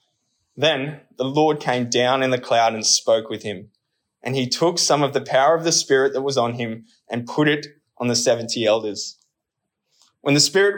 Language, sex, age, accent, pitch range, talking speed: English, male, 20-39, Australian, 120-155 Hz, 200 wpm